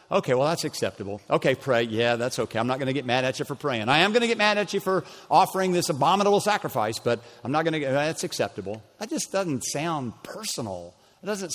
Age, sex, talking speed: 50-69, male, 245 wpm